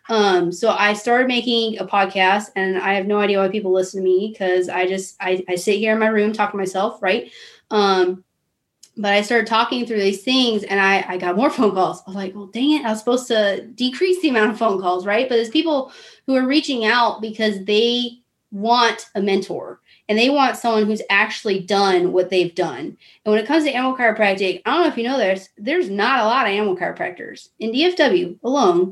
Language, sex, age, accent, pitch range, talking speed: English, female, 20-39, American, 190-240 Hz, 225 wpm